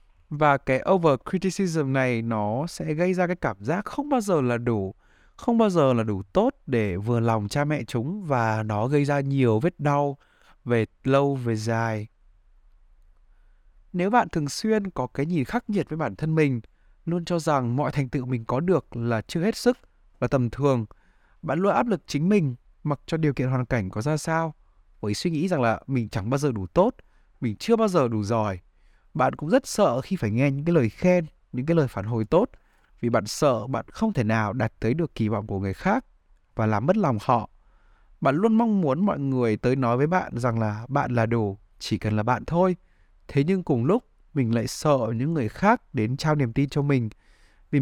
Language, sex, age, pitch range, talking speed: Vietnamese, male, 20-39, 110-160 Hz, 220 wpm